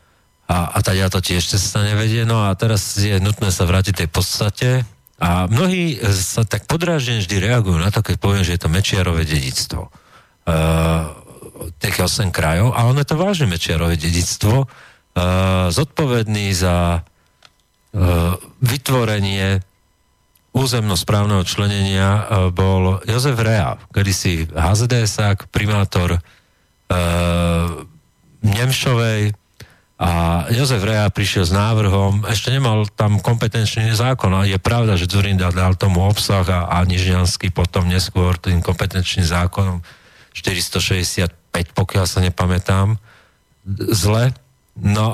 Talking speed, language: 130 wpm, Slovak